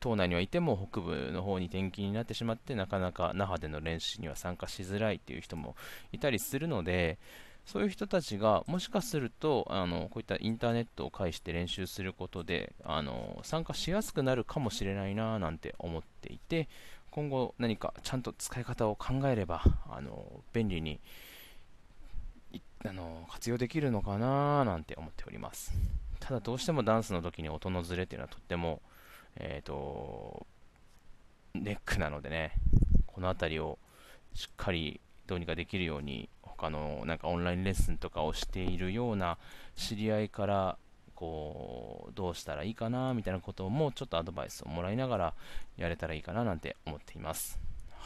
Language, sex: Japanese, male